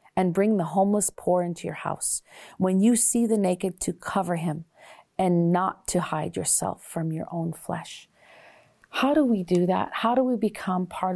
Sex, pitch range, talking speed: female, 165-210 Hz, 190 wpm